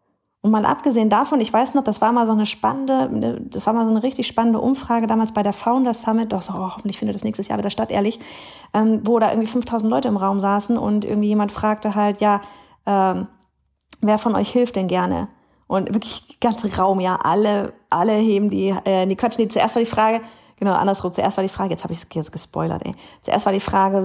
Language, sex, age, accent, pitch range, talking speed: German, female, 30-49, German, 180-230 Hz, 230 wpm